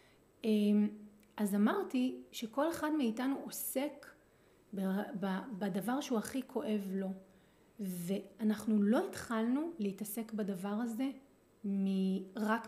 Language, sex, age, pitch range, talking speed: Hebrew, female, 30-49, 205-260 Hz, 90 wpm